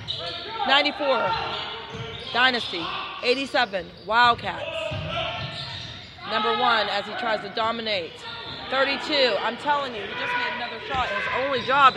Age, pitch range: 30-49, 200-250 Hz